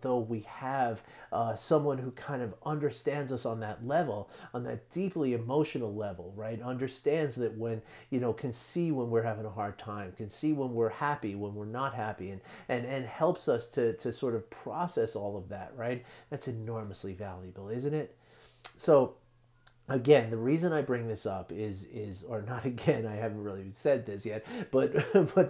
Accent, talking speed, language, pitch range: American, 190 wpm, English, 110-135 Hz